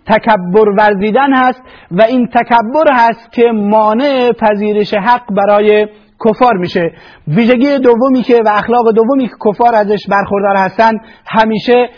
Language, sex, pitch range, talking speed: Persian, male, 210-240 Hz, 130 wpm